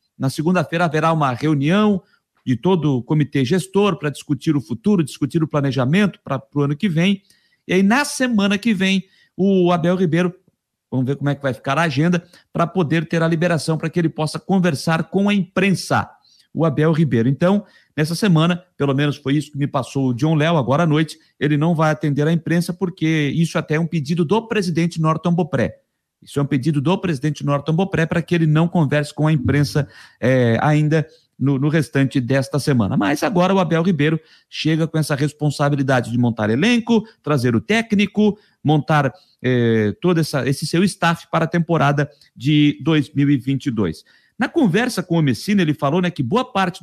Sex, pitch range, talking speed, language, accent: male, 145-185 Hz, 190 wpm, Portuguese, Brazilian